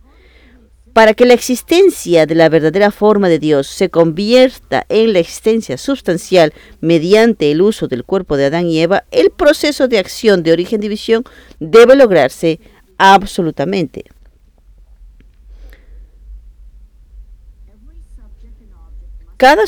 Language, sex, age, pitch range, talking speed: English, female, 40-59, 160-235 Hz, 105 wpm